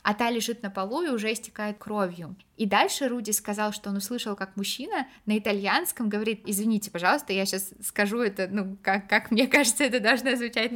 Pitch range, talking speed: 195-235 Hz, 195 wpm